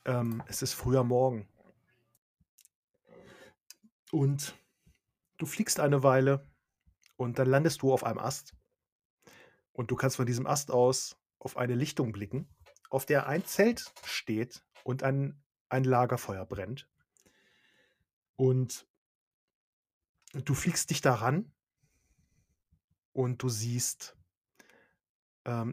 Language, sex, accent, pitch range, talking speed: German, male, German, 125-145 Hz, 110 wpm